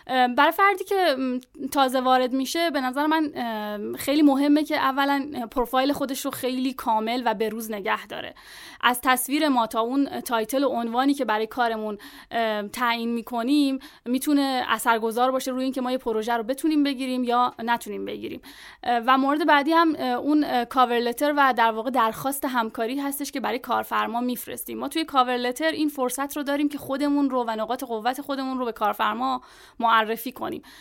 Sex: female